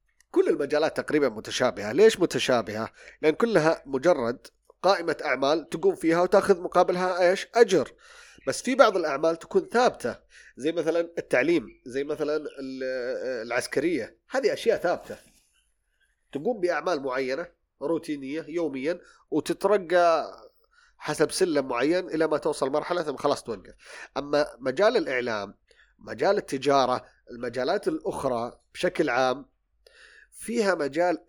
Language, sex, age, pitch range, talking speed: Arabic, male, 30-49, 130-220 Hz, 115 wpm